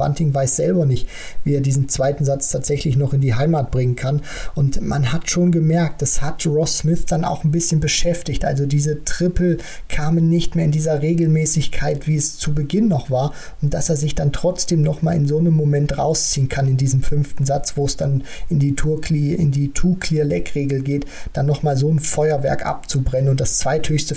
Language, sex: German, male